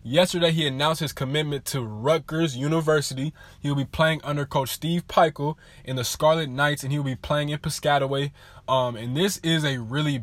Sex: male